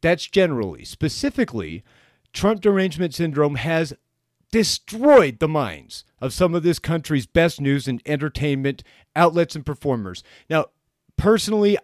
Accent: American